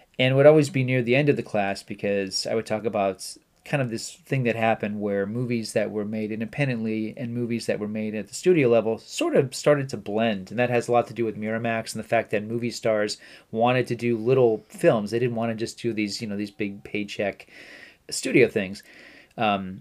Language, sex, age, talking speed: English, male, 30-49, 230 wpm